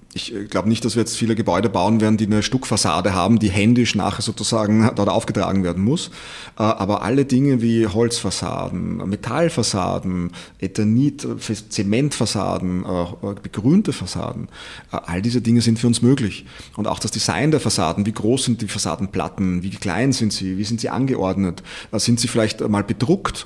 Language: German